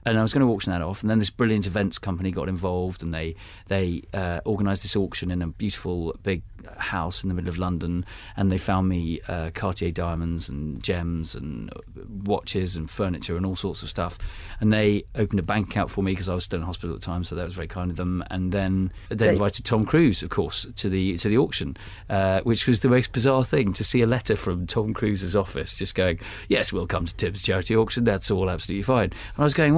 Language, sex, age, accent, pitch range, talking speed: English, male, 40-59, British, 90-115 Hz, 240 wpm